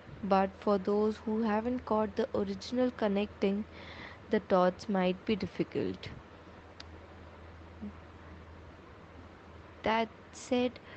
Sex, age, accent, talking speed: female, 20-39, Indian, 90 wpm